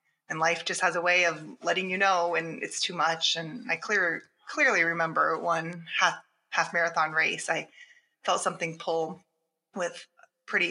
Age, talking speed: 20-39, 170 wpm